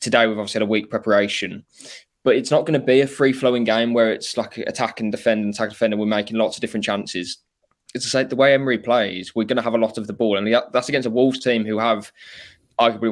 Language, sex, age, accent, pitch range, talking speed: English, male, 20-39, British, 100-115 Hz, 260 wpm